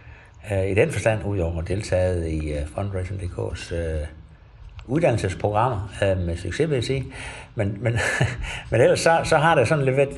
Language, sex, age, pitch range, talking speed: Danish, male, 60-79, 90-120 Hz, 170 wpm